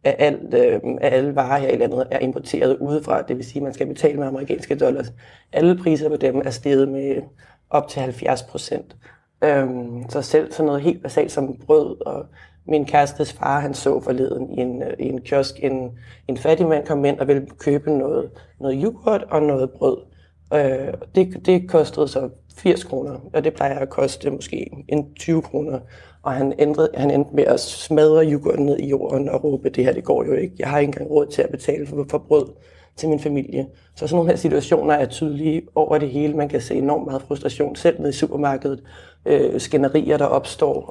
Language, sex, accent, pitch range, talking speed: Danish, male, native, 130-150 Hz, 205 wpm